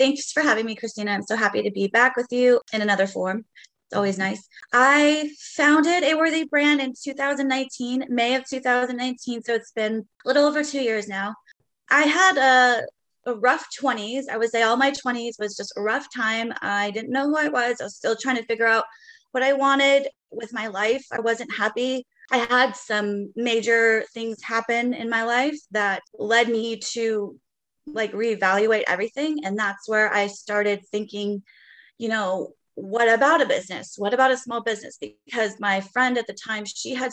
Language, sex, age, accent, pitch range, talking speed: English, female, 20-39, American, 210-260 Hz, 190 wpm